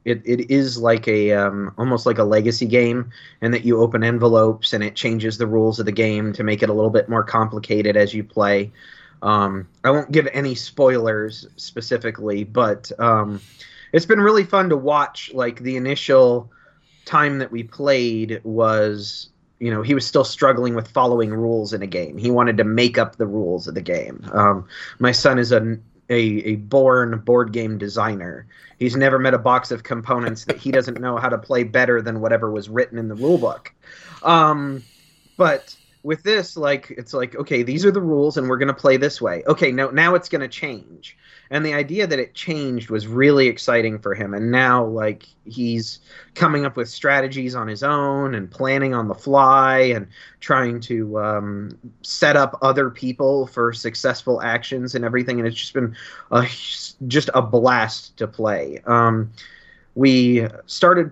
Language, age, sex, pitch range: English, 30-49, male, 110-135 Hz